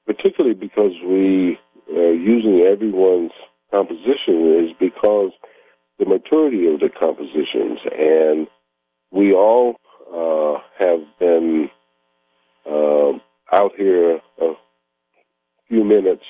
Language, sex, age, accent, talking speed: English, male, 50-69, American, 95 wpm